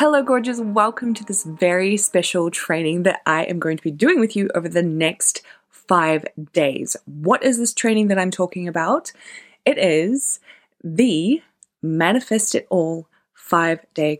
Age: 20-39